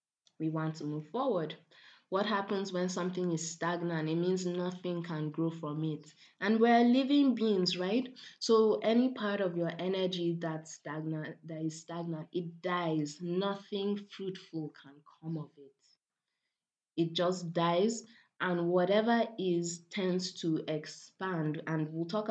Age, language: 20-39, English